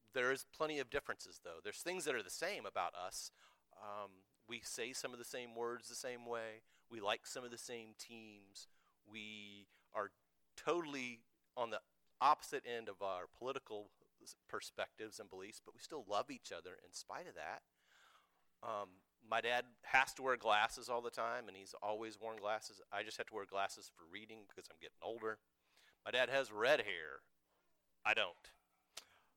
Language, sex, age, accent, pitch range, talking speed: English, male, 40-59, American, 95-125 Hz, 180 wpm